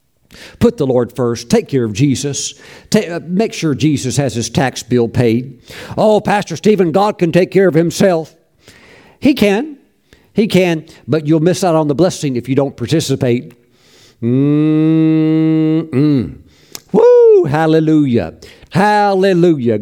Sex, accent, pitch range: male, American, 130-180 Hz